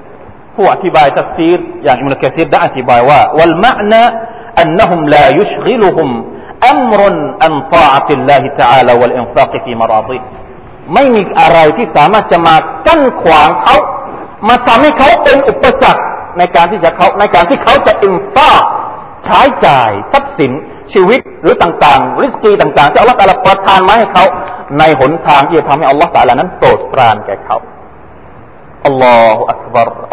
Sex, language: male, Thai